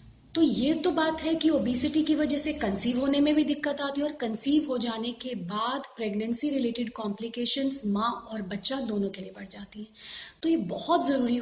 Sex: female